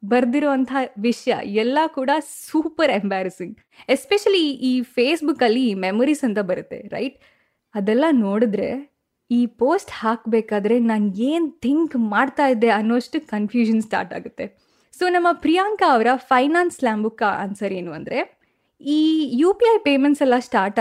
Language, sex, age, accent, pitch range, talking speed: Kannada, female, 10-29, native, 220-295 Hz, 115 wpm